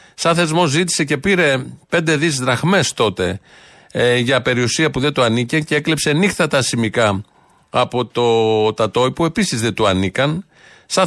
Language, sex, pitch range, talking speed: Greek, male, 120-155 Hz, 150 wpm